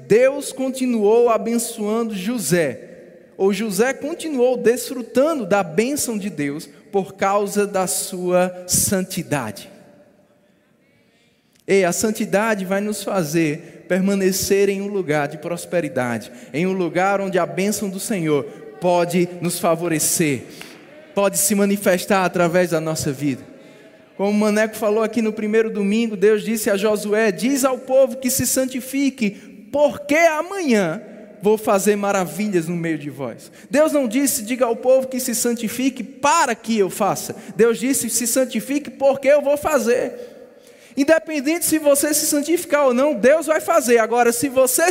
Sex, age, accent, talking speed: male, 20-39, Brazilian, 145 wpm